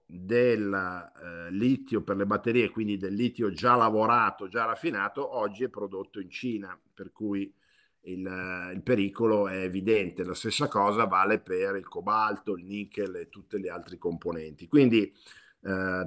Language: Italian